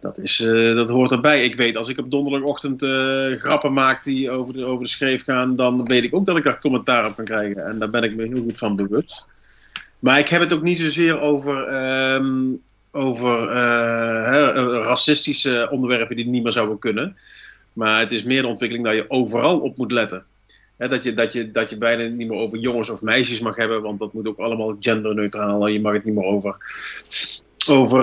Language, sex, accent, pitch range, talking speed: Dutch, male, Dutch, 115-140 Hz, 220 wpm